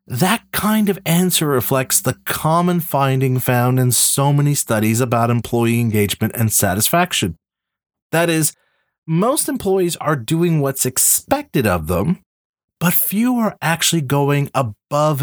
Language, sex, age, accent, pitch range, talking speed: English, male, 30-49, American, 120-180 Hz, 135 wpm